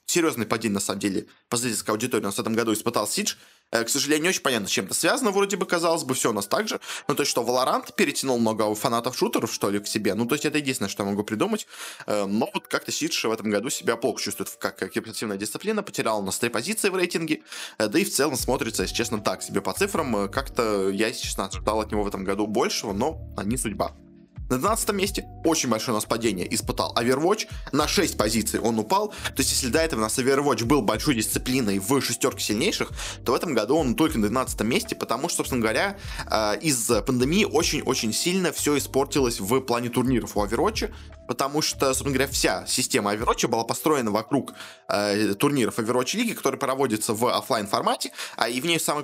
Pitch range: 110-155 Hz